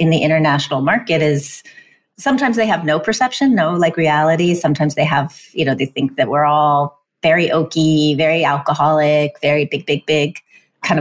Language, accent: English, American